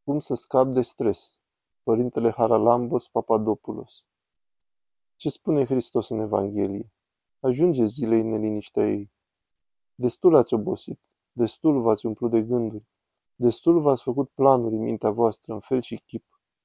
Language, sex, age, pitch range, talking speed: Romanian, male, 20-39, 110-140 Hz, 130 wpm